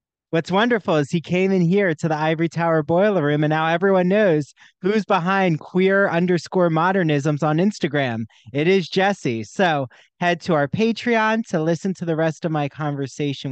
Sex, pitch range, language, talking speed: male, 155-185 Hz, English, 180 wpm